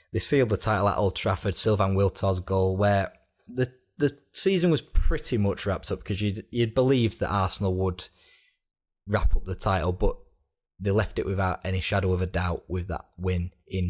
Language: English